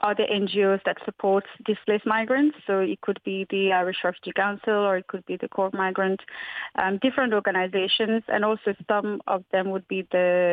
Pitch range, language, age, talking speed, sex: 185-220 Hz, English, 30-49, 180 wpm, female